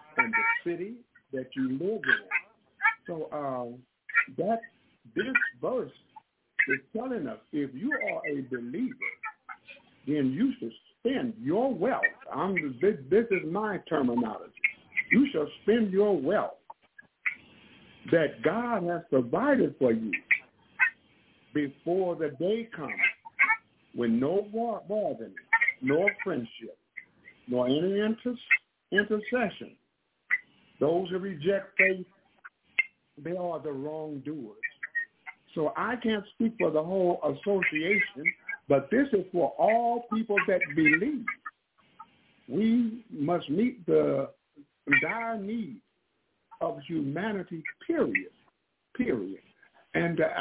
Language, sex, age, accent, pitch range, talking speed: English, male, 60-79, American, 165-265 Hz, 110 wpm